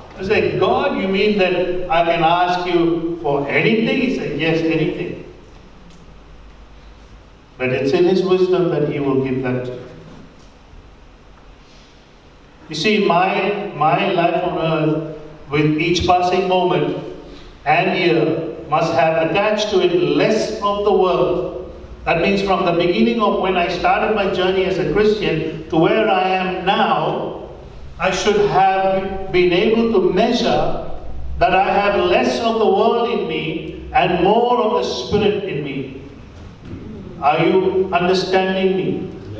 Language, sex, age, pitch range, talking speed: English, male, 50-69, 145-200 Hz, 145 wpm